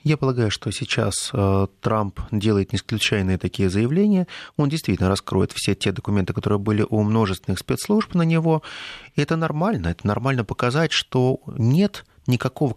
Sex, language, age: male, Russian, 30-49